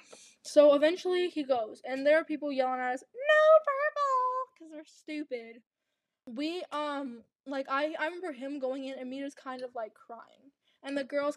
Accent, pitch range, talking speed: American, 240-280 Hz, 190 wpm